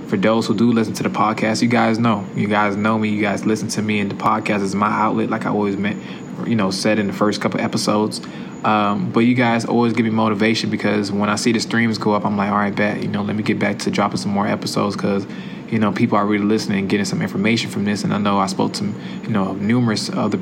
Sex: male